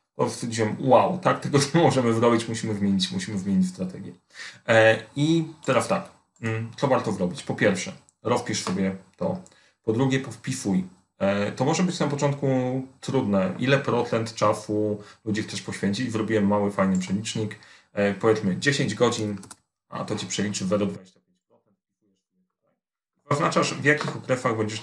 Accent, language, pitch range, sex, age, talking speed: native, Polish, 105-130 Hz, male, 30-49, 135 wpm